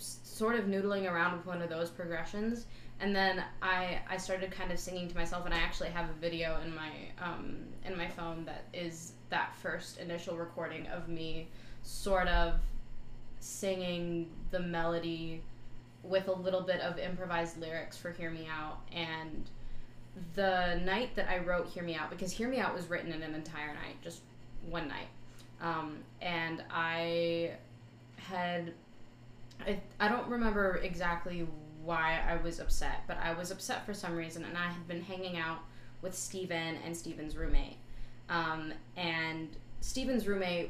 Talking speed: 165 wpm